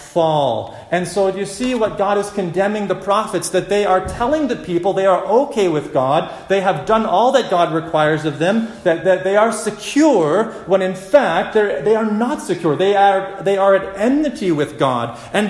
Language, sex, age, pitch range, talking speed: English, male, 30-49, 170-215 Hz, 200 wpm